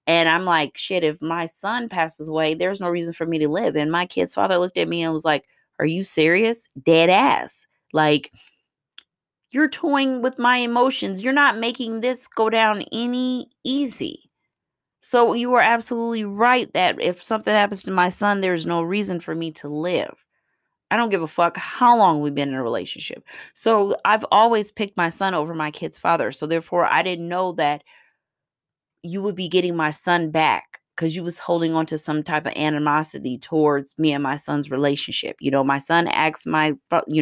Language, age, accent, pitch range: English, 20-39, American, 155-205 Hz